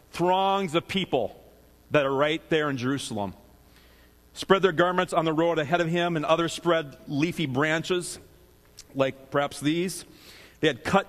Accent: American